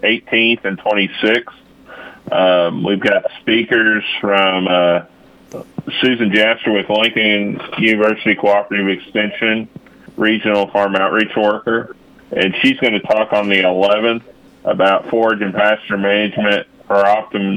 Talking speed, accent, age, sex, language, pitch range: 120 wpm, American, 40-59, male, English, 100-110 Hz